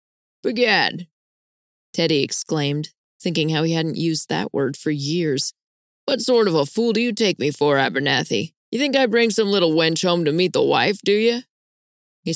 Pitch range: 155-190 Hz